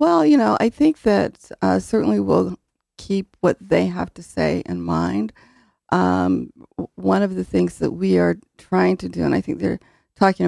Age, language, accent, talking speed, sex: 50-69, English, American, 190 wpm, female